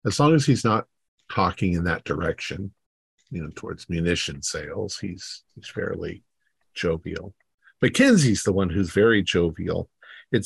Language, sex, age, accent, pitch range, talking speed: English, male, 50-69, American, 90-115 Hz, 145 wpm